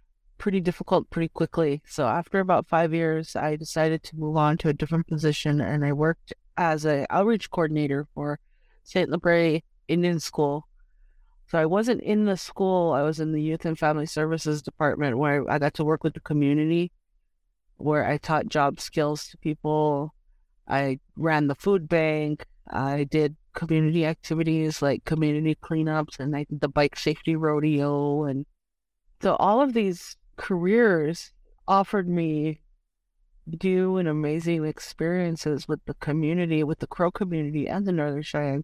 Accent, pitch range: American, 150-175 Hz